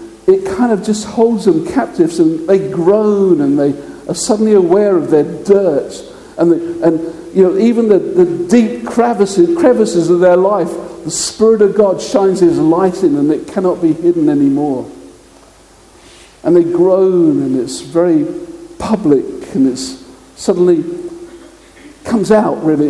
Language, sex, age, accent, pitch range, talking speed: English, male, 50-69, British, 170-235 Hz, 155 wpm